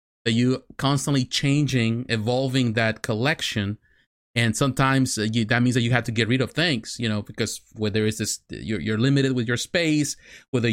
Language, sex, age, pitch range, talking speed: English, male, 30-49, 110-140 Hz, 180 wpm